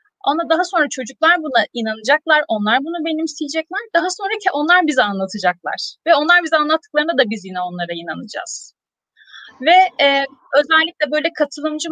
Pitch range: 230-300 Hz